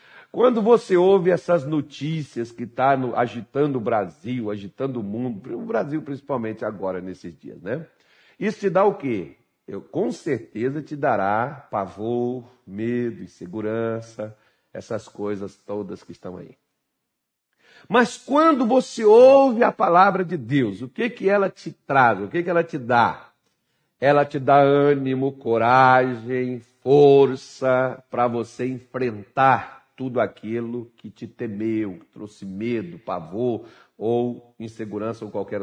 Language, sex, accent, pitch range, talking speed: Portuguese, male, Brazilian, 120-155 Hz, 135 wpm